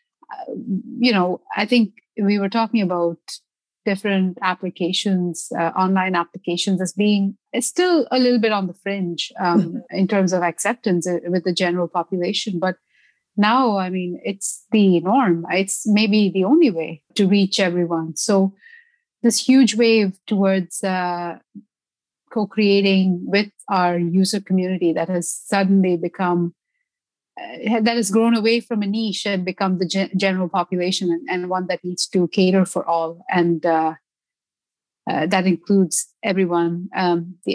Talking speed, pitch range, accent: 145 wpm, 175-205 Hz, Indian